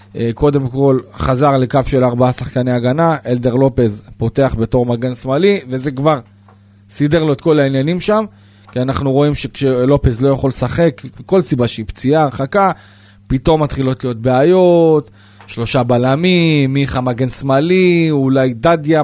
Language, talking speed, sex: Hebrew, 140 wpm, male